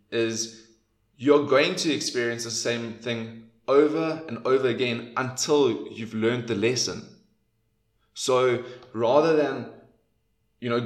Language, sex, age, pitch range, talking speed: English, male, 20-39, 110-125 Hz, 120 wpm